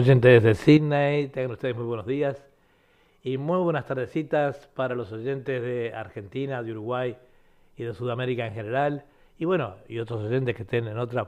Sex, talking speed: male, 175 wpm